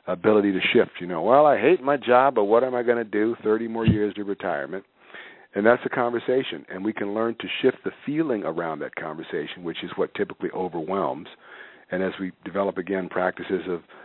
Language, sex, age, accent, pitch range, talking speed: English, male, 50-69, American, 95-105 Hz, 210 wpm